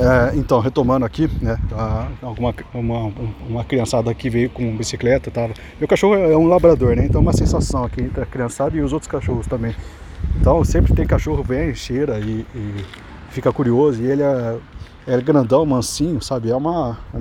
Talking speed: 190 wpm